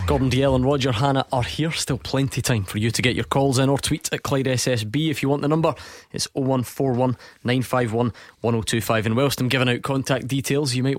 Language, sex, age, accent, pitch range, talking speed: English, male, 20-39, British, 110-135 Hz, 225 wpm